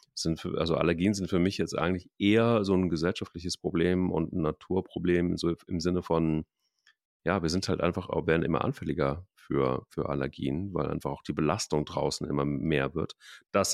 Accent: German